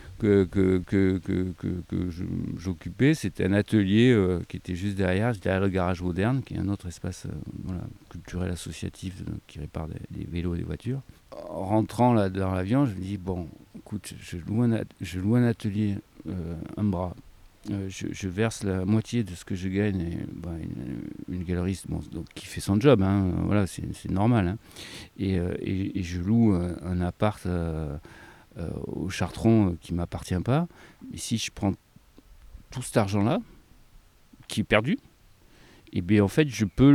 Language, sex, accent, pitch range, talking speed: French, male, French, 90-110 Hz, 190 wpm